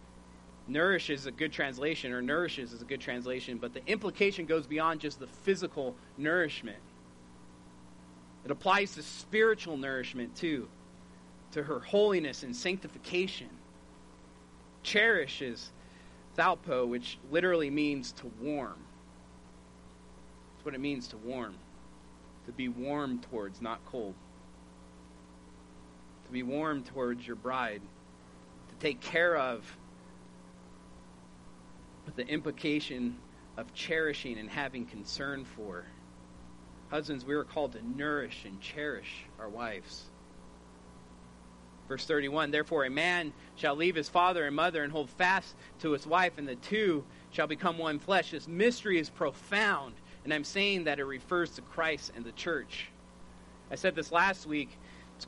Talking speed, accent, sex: 135 wpm, American, male